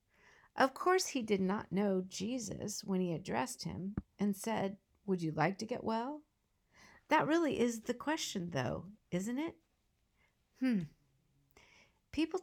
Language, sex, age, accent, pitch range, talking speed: English, female, 50-69, American, 185-250 Hz, 140 wpm